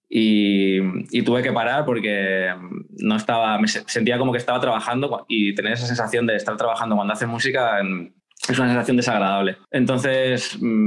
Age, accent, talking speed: 20-39, Spanish, 160 wpm